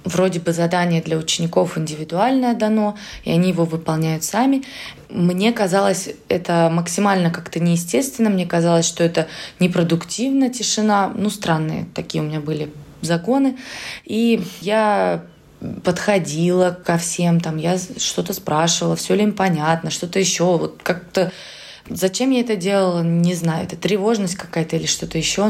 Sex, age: female, 20-39